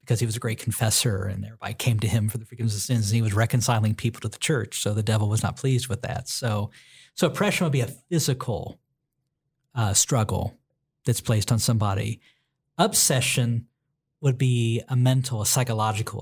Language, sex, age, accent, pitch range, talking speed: English, male, 50-69, American, 115-145 Hz, 190 wpm